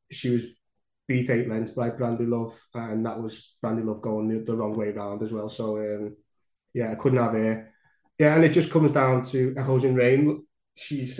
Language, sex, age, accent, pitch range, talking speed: English, male, 20-39, British, 120-140 Hz, 210 wpm